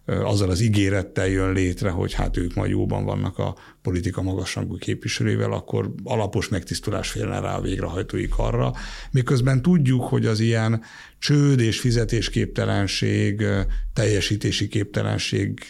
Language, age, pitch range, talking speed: Hungarian, 60-79, 95-115 Hz, 125 wpm